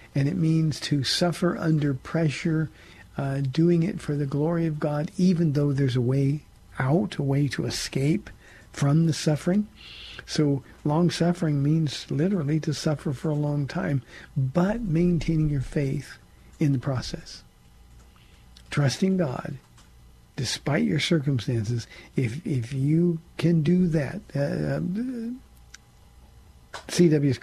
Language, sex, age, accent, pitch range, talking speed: English, male, 50-69, American, 130-160 Hz, 125 wpm